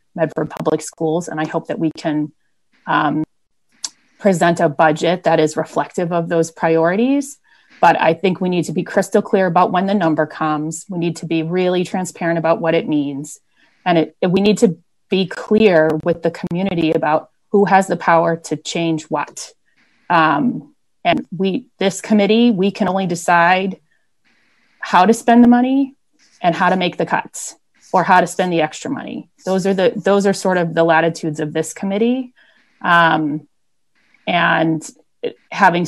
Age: 30-49